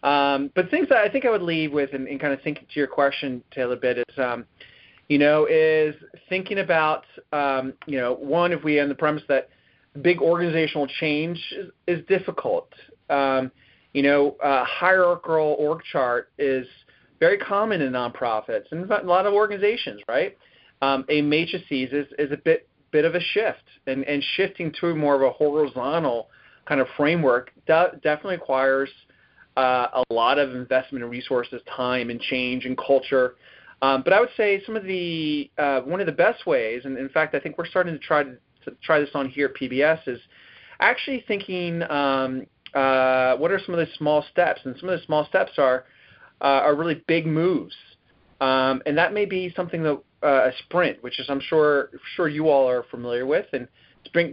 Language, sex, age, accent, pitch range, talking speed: English, male, 30-49, American, 135-170 Hz, 190 wpm